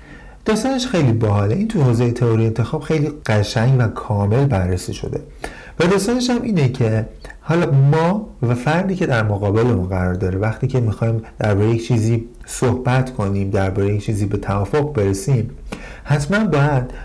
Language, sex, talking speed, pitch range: Persian, male, 150 wpm, 105-140 Hz